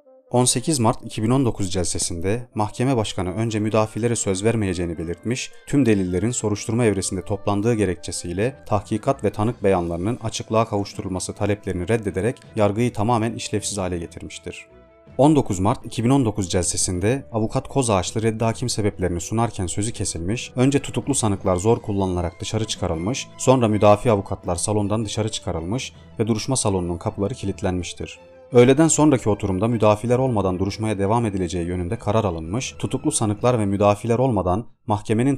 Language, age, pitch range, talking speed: Turkish, 40-59, 95-120 Hz, 130 wpm